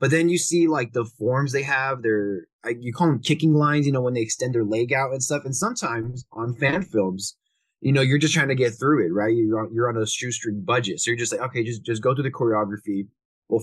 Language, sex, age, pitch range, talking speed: English, male, 20-39, 105-135 Hz, 265 wpm